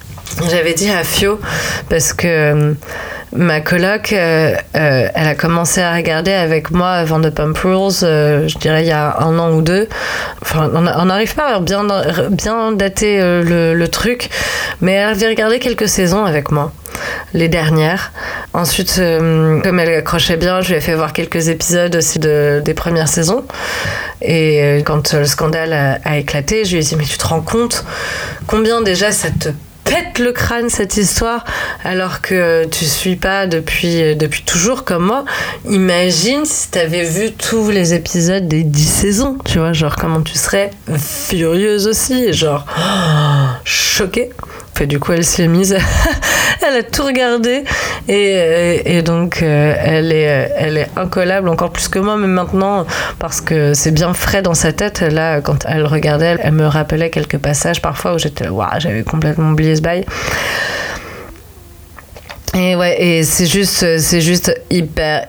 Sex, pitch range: female, 150-185 Hz